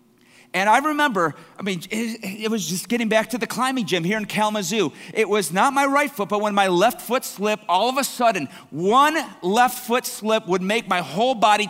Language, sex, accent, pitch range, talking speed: English, male, American, 170-240 Hz, 220 wpm